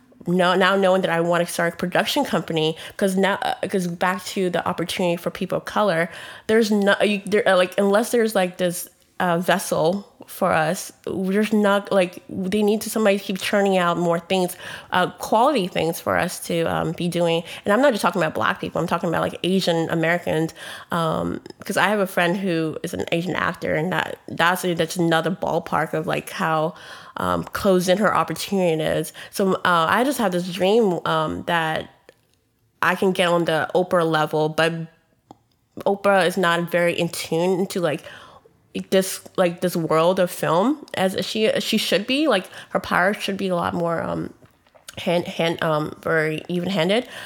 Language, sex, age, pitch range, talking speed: English, female, 20-39, 165-195 Hz, 190 wpm